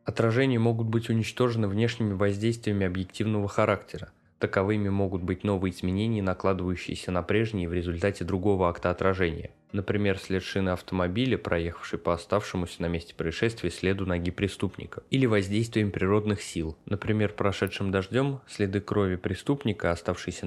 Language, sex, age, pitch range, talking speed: Russian, male, 20-39, 95-110 Hz, 130 wpm